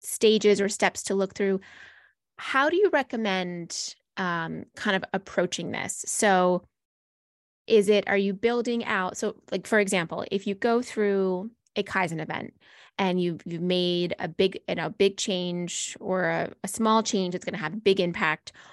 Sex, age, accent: female, 20-39, American